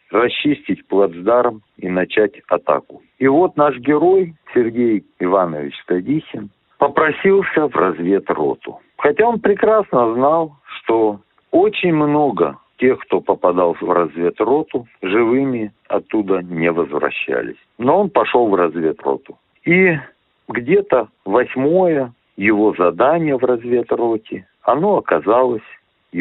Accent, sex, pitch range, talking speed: native, male, 95-155 Hz, 105 wpm